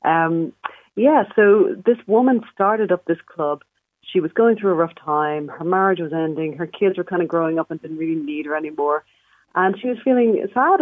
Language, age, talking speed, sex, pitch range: English, 40-59, 210 wpm, female, 160-205 Hz